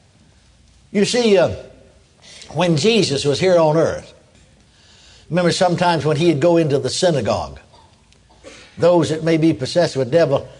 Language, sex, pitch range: English, male, 145-190 Hz